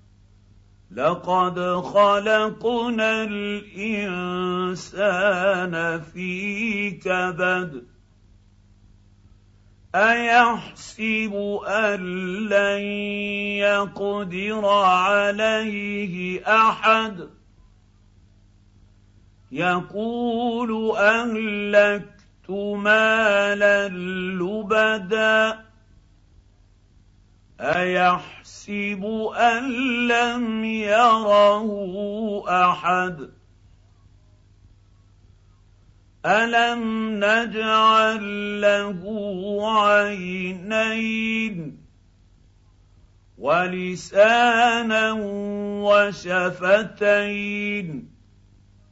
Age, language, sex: 50-69, Arabic, male